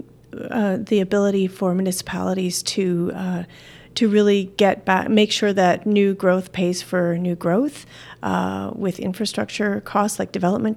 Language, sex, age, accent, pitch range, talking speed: English, female, 40-59, American, 185-220 Hz, 145 wpm